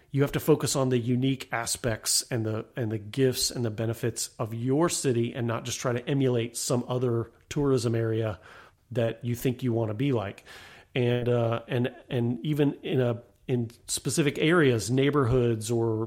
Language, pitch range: English, 115-130 Hz